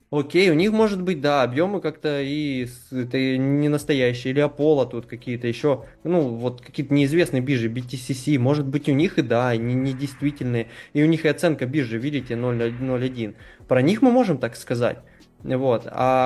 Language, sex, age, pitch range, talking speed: Russian, male, 20-39, 125-155 Hz, 180 wpm